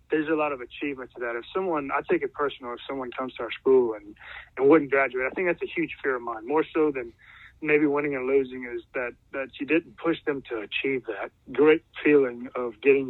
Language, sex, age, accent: English, male, 30-49, American